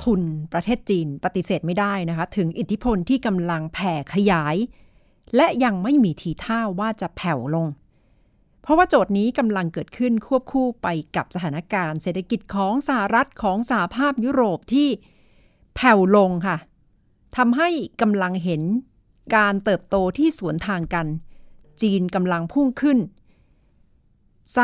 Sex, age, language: female, 60-79, Thai